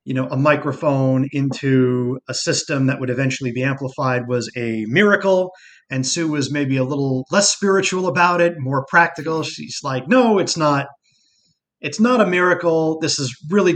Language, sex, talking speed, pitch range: English, male, 170 wpm, 130-170 Hz